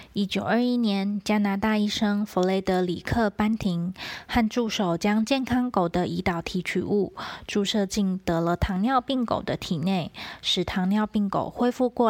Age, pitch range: 20-39, 185-220 Hz